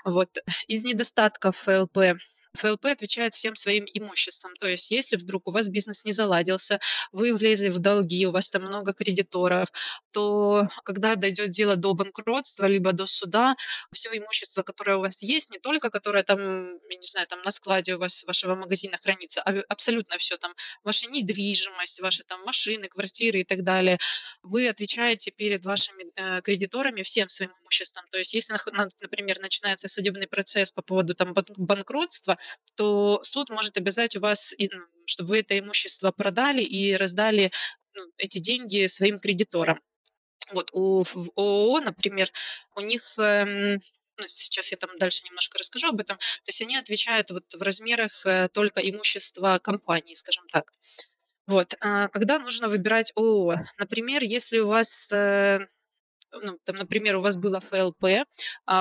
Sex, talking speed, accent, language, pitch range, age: female, 150 wpm, native, Ukrainian, 190-215 Hz, 20-39